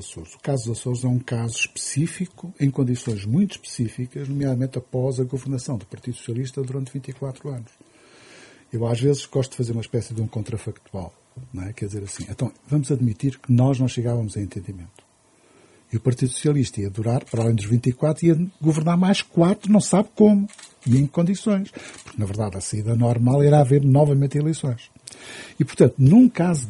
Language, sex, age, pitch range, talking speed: Portuguese, male, 60-79, 115-150 Hz, 185 wpm